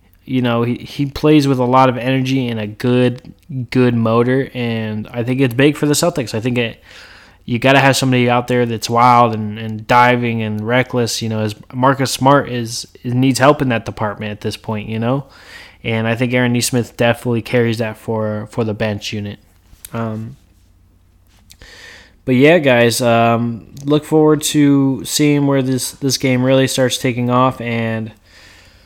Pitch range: 110-130 Hz